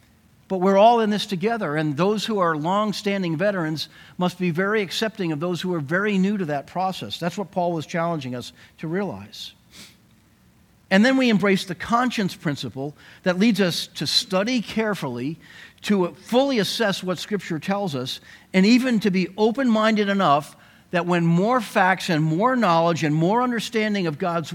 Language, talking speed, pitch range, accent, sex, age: English, 175 wpm, 150-205 Hz, American, male, 50-69